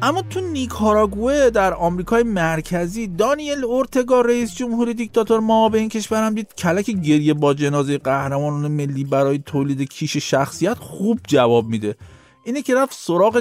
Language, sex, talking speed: Persian, male, 150 wpm